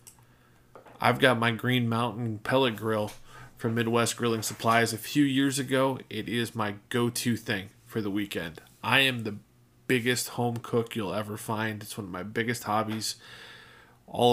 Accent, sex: American, male